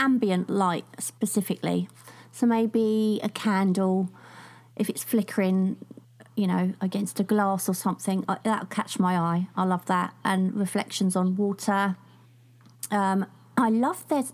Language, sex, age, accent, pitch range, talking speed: English, female, 30-49, British, 185-245 Hz, 135 wpm